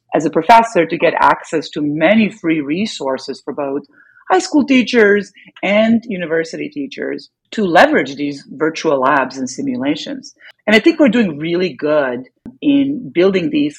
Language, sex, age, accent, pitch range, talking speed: English, female, 40-59, American, 150-225 Hz, 150 wpm